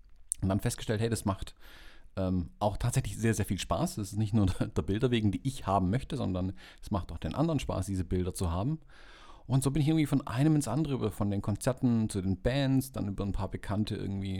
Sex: male